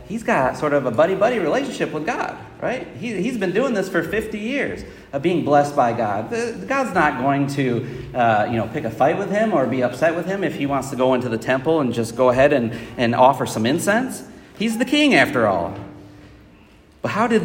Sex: male